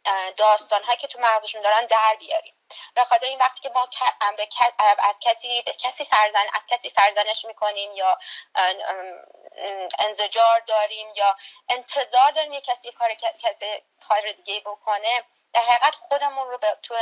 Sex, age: female, 30-49